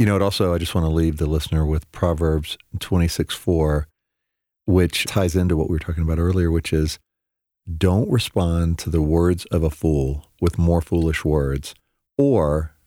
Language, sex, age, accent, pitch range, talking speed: English, male, 50-69, American, 75-90 Hz, 185 wpm